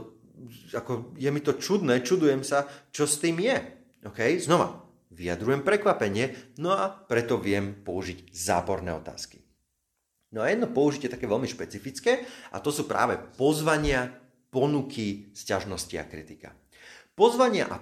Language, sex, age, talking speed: Slovak, male, 30-49, 135 wpm